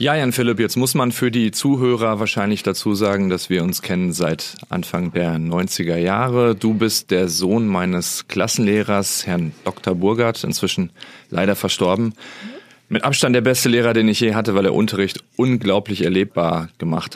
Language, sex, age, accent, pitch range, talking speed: German, male, 40-59, German, 90-125 Hz, 170 wpm